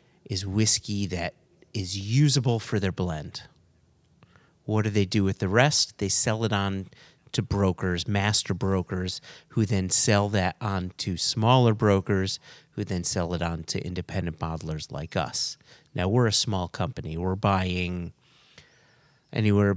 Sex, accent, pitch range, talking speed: male, American, 95-120 Hz, 150 wpm